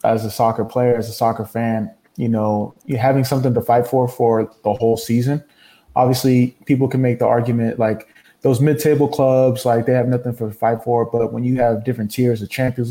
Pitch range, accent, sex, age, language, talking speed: 110-125 Hz, American, male, 20-39, English, 215 wpm